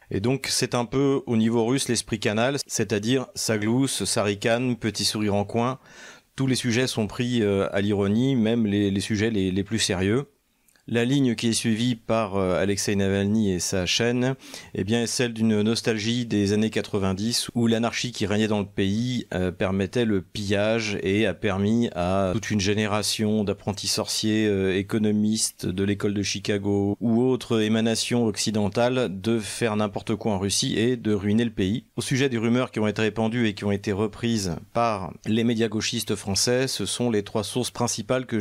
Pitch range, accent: 105-120 Hz, French